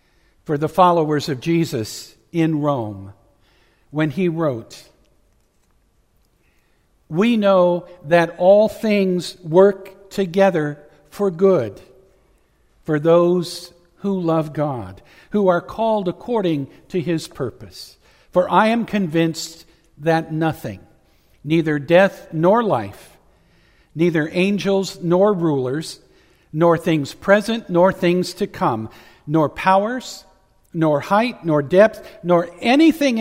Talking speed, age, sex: 110 wpm, 60-79, male